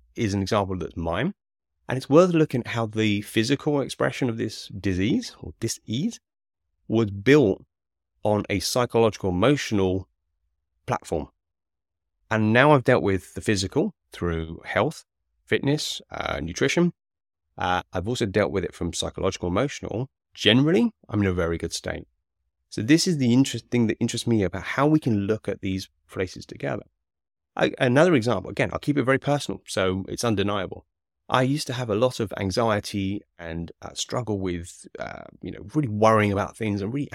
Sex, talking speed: male, 170 wpm